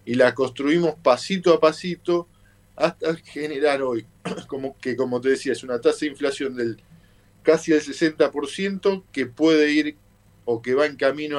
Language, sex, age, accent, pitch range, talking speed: Spanish, male, 50-69, Argentinian, 115-160 Hz, 165 wpm